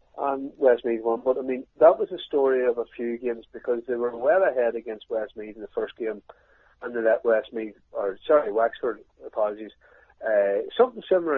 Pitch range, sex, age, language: 110-145 Hz, male, 40-59, English